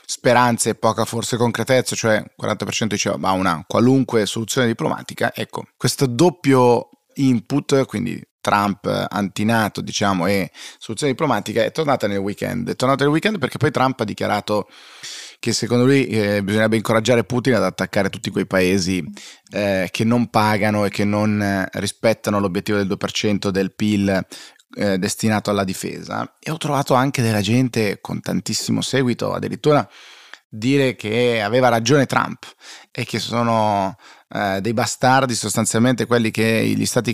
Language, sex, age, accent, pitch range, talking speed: Italian, male, 20-39, native, 105-125 Hz, 145 wpm